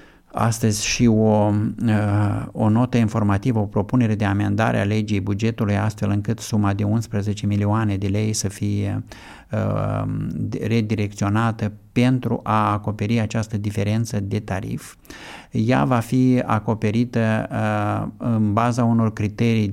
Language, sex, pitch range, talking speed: Romanian, male, 105-115 Hz, 125 wpm